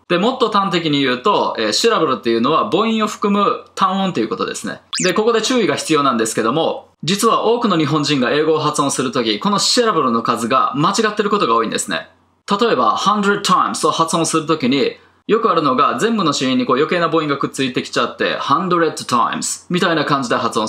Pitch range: 155-215 Hz